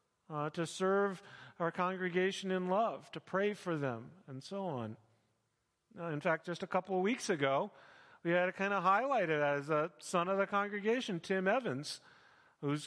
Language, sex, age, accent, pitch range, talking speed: English, male, 40-59, American, 170-210 Hz, 180 wpm